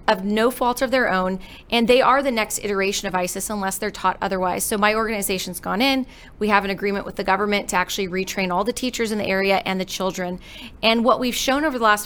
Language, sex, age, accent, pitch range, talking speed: English, female, 30-49, American, 190-235 Hz, 245 wpm